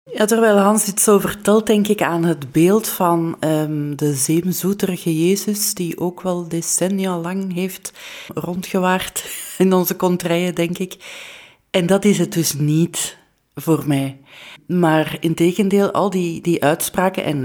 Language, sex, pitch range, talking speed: Dutch, female, 155-195 Hz, 150 wpm